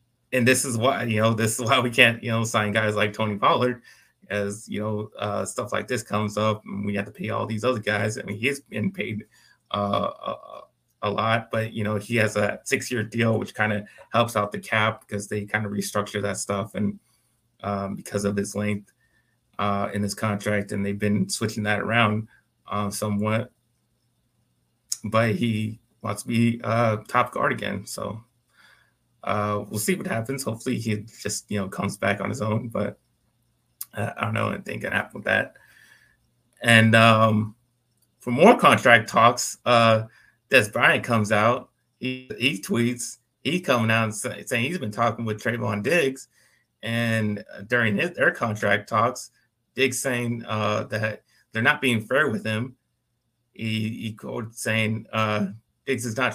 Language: English